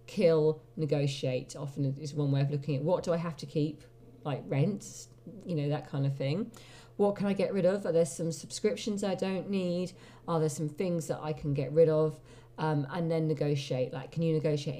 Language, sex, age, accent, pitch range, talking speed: English, female, 40-59, British, 140-180 Hz, 220 wpm